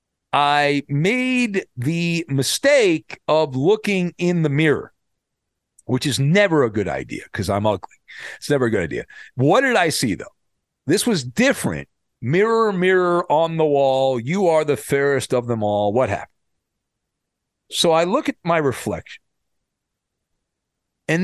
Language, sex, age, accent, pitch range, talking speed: English, male, 50-69, American, 130-190 Hz, 145 wpm